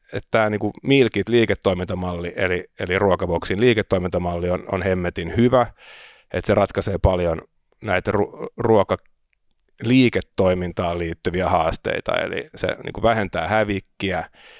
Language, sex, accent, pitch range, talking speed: Finnish, male, native, 90-100 Hz, 105 wpm